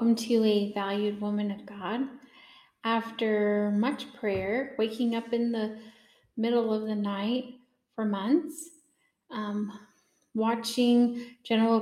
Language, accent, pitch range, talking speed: English, American, 210-245 Hz, 115 wpm